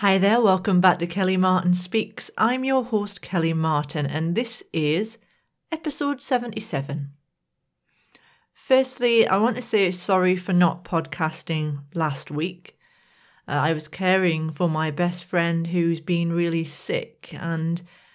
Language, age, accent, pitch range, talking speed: English, 40-59, British, 155-185 Hz, 140 wpm